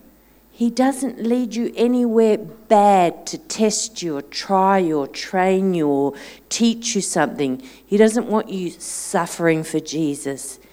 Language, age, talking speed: English, 50-69, 145 wpm